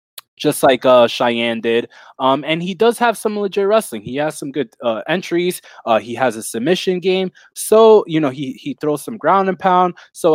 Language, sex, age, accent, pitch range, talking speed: English, male, 20-39, American, 130-195 Hz, 210 wpm